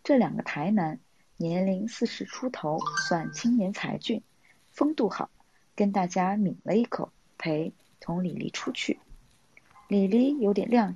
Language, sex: Chinese, female